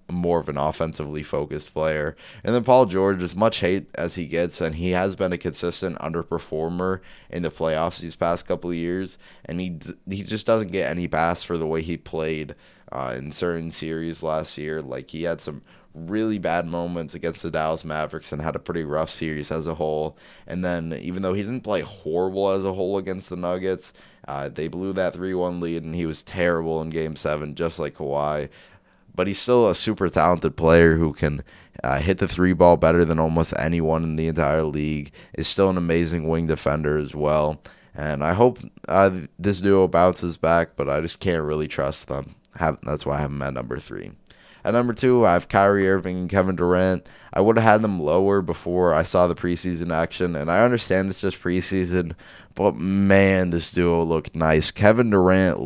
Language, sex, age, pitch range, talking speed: English, male, 20-39, 80-95 Hz, 205 wpm